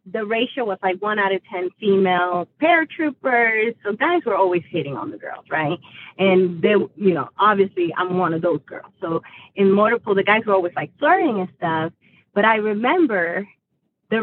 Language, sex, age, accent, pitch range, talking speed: English, female, 30-49, American, 185-255 Hz, 185 wpm